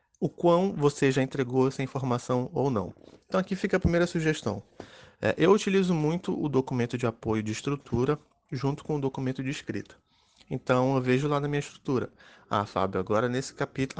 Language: Portuguese